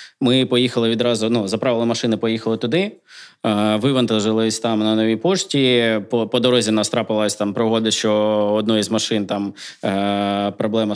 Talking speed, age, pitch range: 150 wpm, 20-39, 105-120 Hz